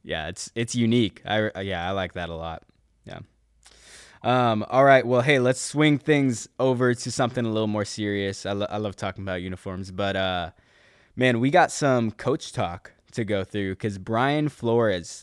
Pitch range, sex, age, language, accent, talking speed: 100-120 Hz, male, 20-39, English, American, 190 wpm